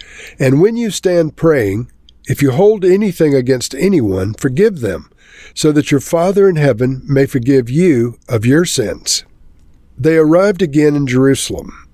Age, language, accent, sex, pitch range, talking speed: 50-69, English, American, male, 110-160 Hz, 150 wpm